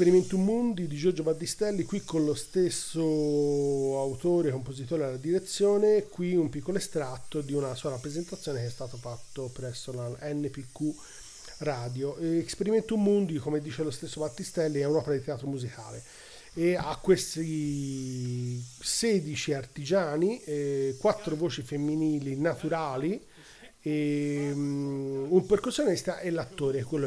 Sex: male